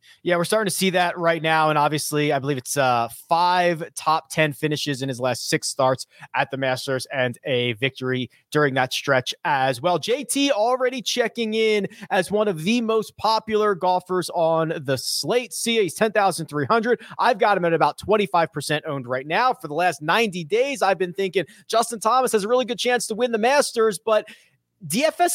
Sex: male